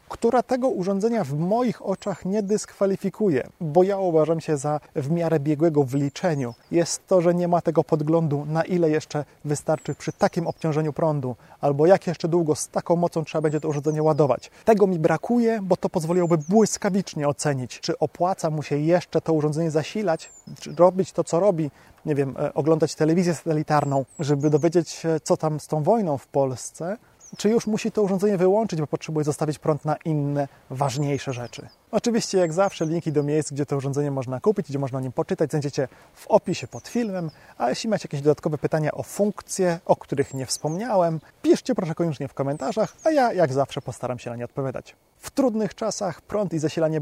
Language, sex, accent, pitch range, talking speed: Polish, male, native, 145-185 Hz, 190 wpm